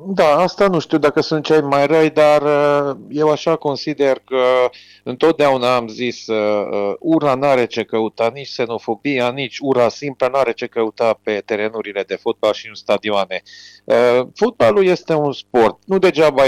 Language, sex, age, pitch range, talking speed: Romanian, male, 40-59, 115-155 Hz, 160 wpm